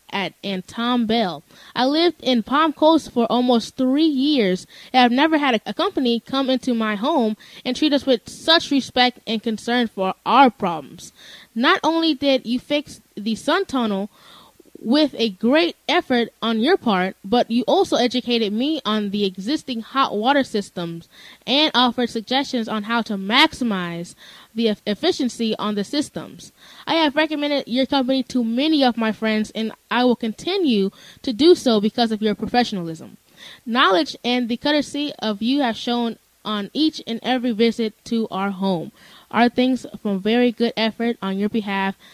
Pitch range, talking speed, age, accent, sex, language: 215-275 Hz, 170 wpm, 10-29, American, female, English